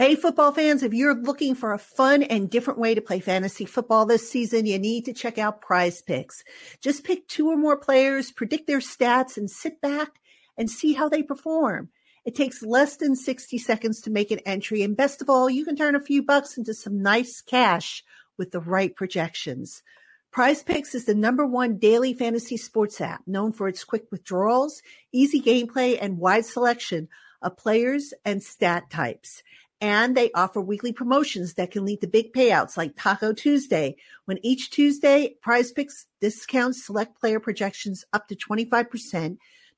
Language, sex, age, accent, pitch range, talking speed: English, female, 50-69, American, 205-270 Hz, 185 wpm